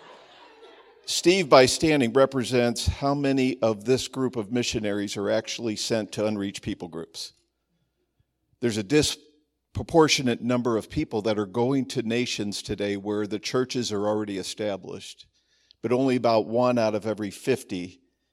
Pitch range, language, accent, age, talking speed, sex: 110-125 Hz, English, American, 50-69, 145 wpm, male